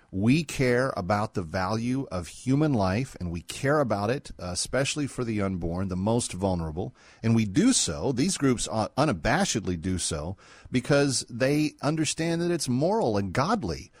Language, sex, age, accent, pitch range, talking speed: English, male, 40-59, American, 95-120 Hz, 160 wpm